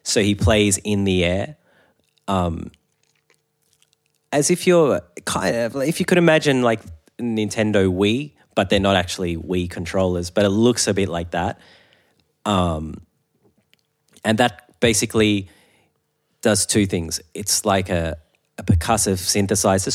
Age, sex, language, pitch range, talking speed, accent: 30-49, male, English, 90-105 Hz, 135 wpm, Australian